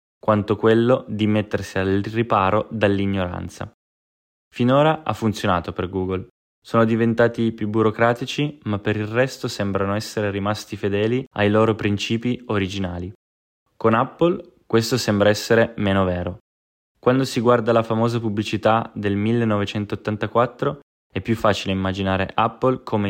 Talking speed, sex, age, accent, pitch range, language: 125 wpm, male, 10-29, native, 100-115 Hz, Italian